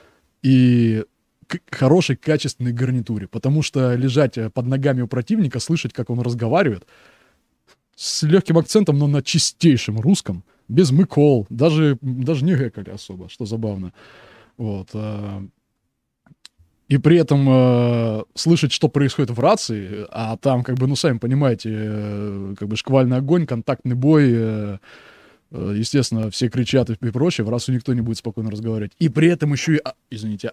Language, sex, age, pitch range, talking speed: Russian, male, 20-39, 105-140 Hz, 150 wpm